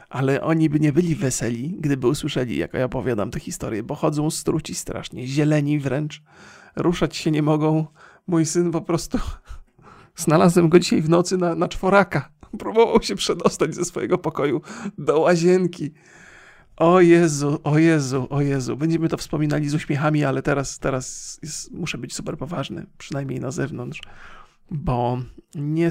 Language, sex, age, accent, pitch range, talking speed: Polish, male, 40-59, native, 140-170 Hz, 155 wpm